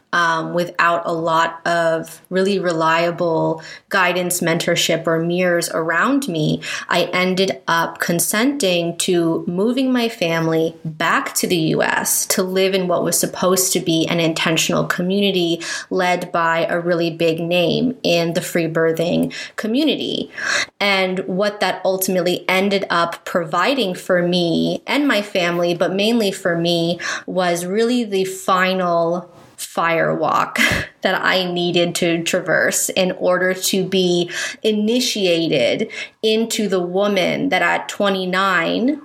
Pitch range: 170-195 Hz